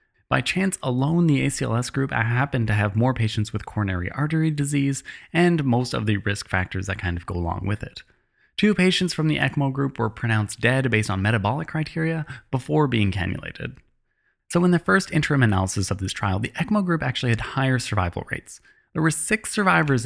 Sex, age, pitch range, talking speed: male, 20-39, 110-160 Hz, 195 wpm